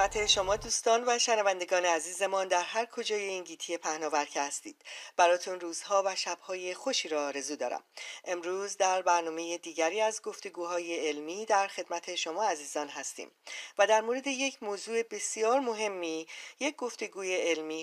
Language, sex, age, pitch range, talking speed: Persian, female, 40-59, 175-230 Hz, 140 wpm